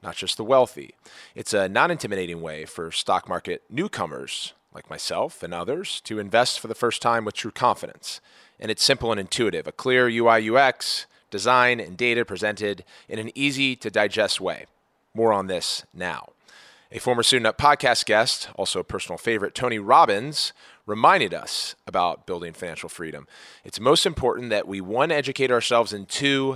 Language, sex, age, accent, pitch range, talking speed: English, male, 30-49, American, 100-135 Hz, 165 wpm